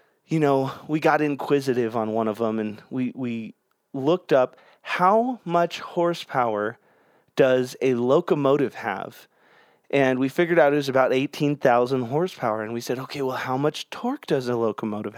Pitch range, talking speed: 135-195 Hz, 160 wpm